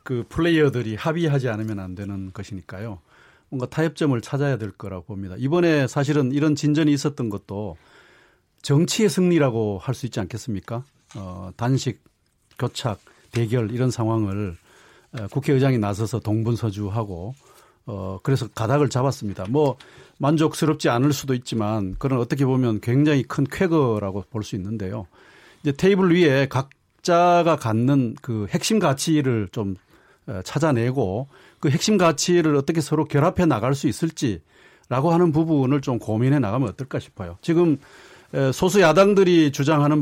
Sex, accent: male, native